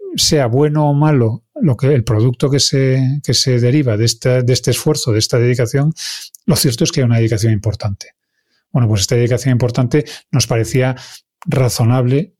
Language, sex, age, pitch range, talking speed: Spanish, male, 40-59, 115-140 Hz, 180 wpm